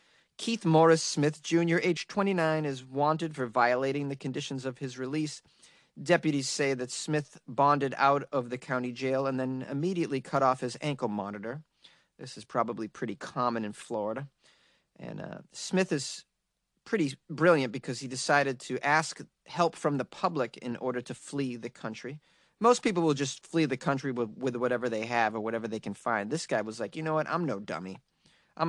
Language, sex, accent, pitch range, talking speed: English, male, American, 130-175 Hz, 185 wpm